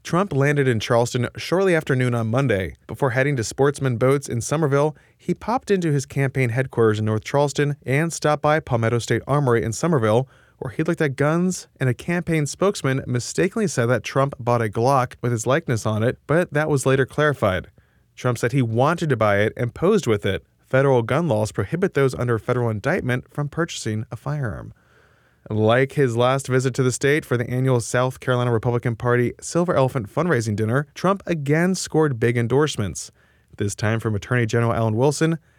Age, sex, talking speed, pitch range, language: 20-39, male, 190 wpm, 115-150 Hz, English